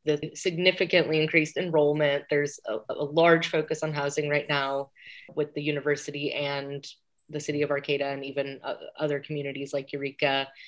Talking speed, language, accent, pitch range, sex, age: 155 wpm, English, American, 145-185 Hz, female, 20-39